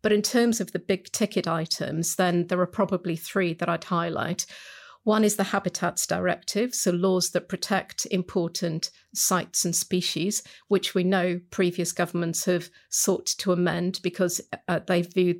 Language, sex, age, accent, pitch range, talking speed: English, female, 40-59, British, 175-195 Hz, 165 wpm